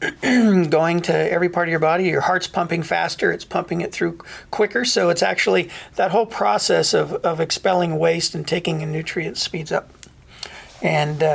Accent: American